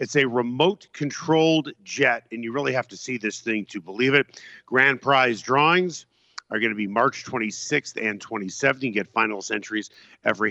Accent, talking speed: American, 175 wpm